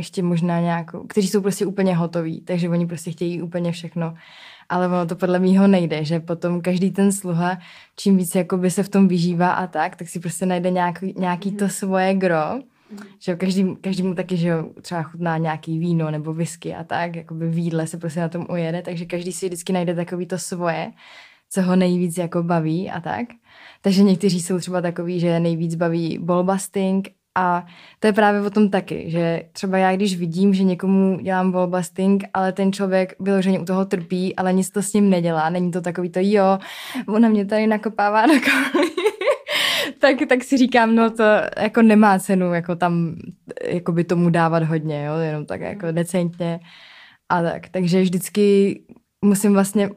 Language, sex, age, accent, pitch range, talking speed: Czech, female, 20-39, native, 175-200 Hz, 185 wpm